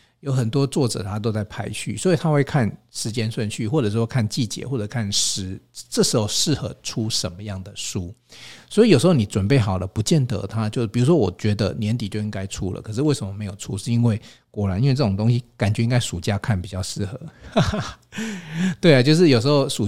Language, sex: Chinese, male